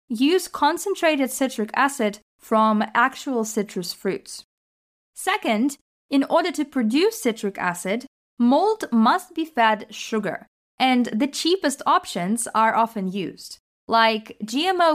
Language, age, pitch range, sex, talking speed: English, 20-39, 220-290 Hz, female, 115 wpm